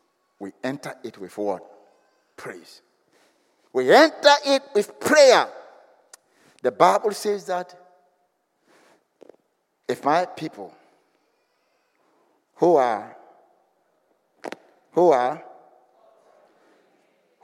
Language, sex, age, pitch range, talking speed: English, male, 60-79, 145-240 Hz, 75 wpm